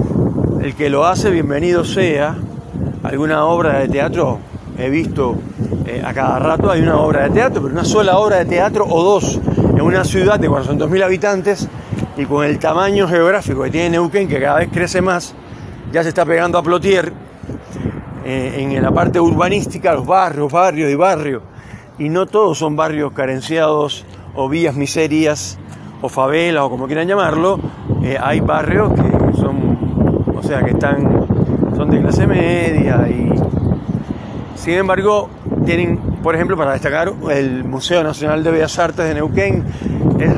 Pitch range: 145-185 Hz